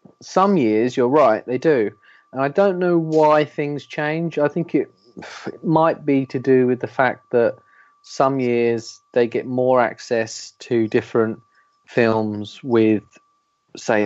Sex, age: male, 30-49